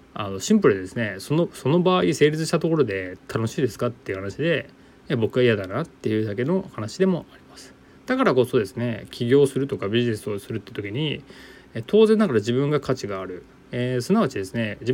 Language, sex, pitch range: Japanese, male, 110-145 Hz